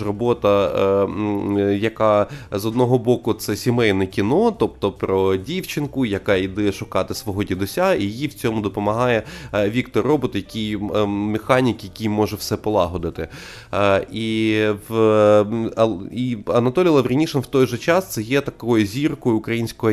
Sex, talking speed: male, 130 wpm